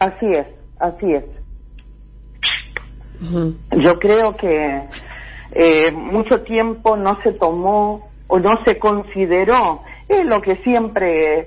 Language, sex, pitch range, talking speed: Spanish, female, 170-240 Hz, 115 wpm